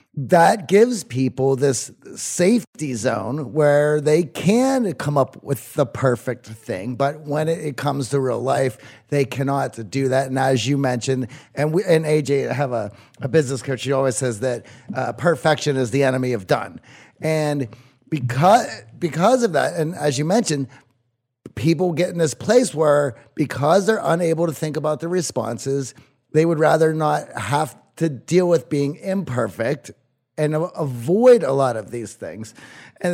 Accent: American